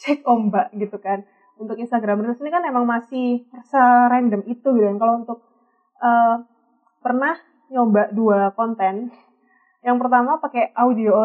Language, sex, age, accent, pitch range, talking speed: Indonesian, female, 20-39, native, 210-255 Hz, 140 wpm